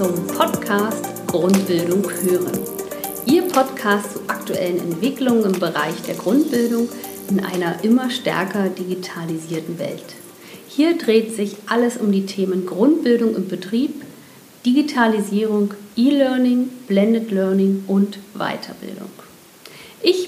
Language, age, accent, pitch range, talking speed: German, 50-69, German, 190-235 Hz, 105 wpm